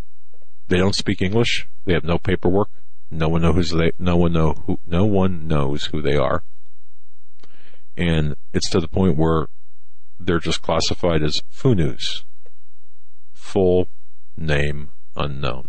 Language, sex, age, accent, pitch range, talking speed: English, male, 50-69, American, 75-95 Hz, 140 wpm